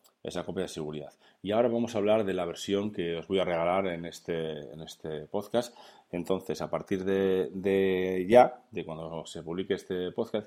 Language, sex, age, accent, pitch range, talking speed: Spanish, male, 30-49, Spanish, 85-100 Hz, 195 wpm